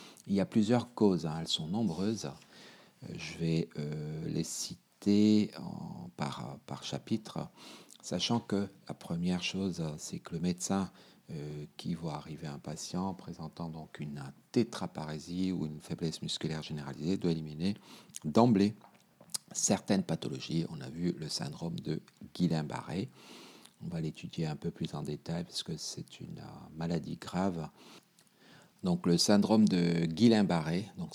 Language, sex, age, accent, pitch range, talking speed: French, male, 50-69, French, 75-95 Hz, 145 wpm